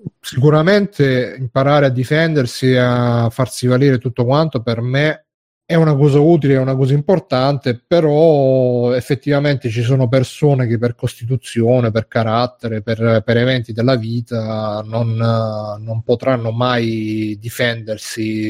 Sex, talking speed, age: male, 125 wpm, 30-49